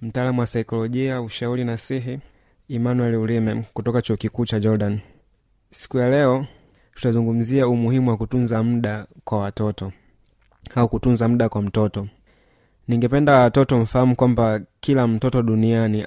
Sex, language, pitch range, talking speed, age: male, Swahili, 110-125 Hz, 125 wpm, 20-39